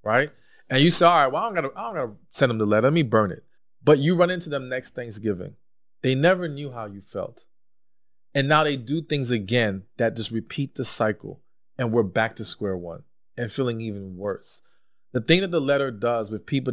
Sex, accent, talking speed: male, American, 215 wpm